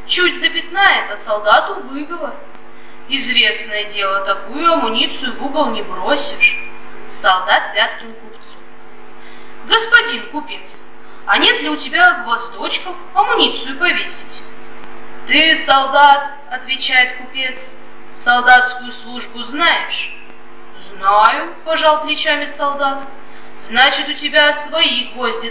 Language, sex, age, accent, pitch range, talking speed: Russian, female, 20-39, native, 235-330 Hz, 105 wpm